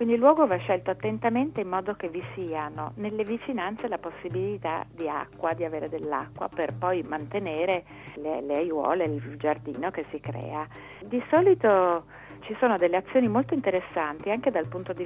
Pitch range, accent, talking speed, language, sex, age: 160-210 Hz, native, 170 wpm, Italian, female, 40-59